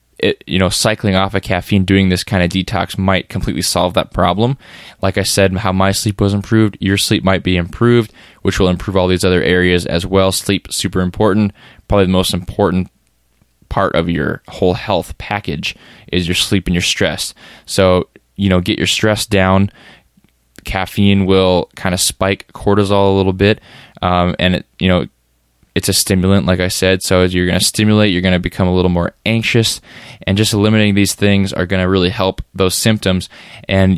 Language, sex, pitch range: English, male, 90-100 Hz